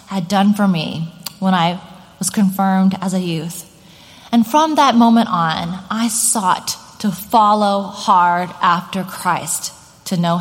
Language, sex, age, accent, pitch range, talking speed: English, female, 30-49, American, 180-225 Hz, 145 wpm